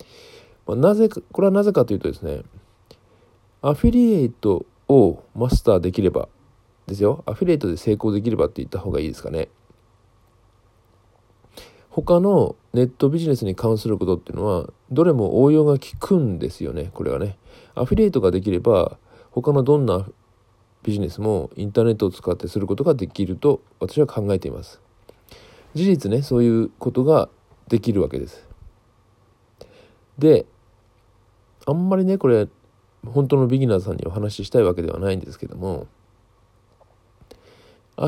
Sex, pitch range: male, 100-130 Hz